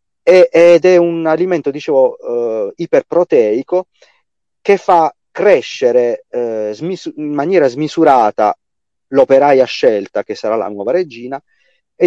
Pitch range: 110-180 Hz